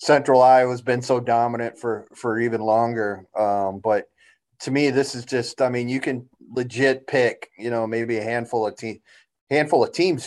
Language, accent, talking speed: English, American, 195 wpm